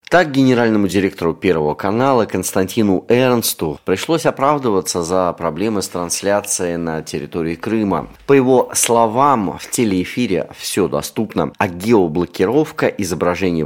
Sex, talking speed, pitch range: male, 115 wpm, 85-110 Hz